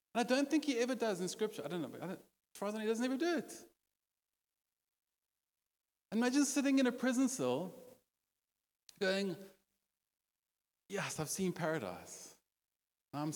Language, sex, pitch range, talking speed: English, male, 155-215 Hz, 145 wpm